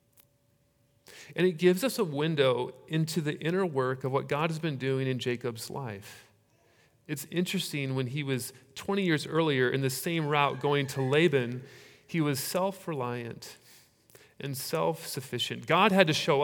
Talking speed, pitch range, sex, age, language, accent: 155 wpm, 120-160 Hz, male, 40-59, English, American